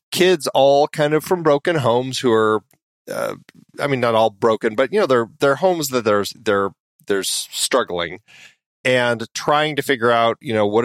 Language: English